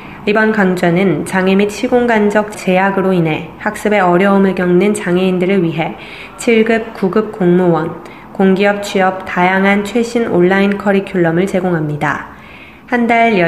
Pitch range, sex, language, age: 175-205 Hz, female, Korean, 20-39